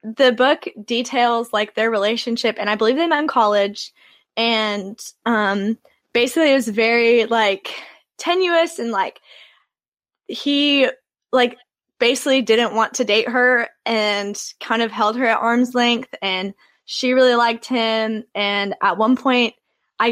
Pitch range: 210-250 Hz